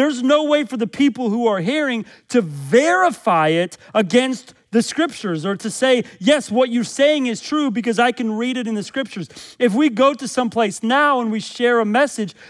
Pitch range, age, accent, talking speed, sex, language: 205-255 Hz, 40-59, American, 205 wpm, male, English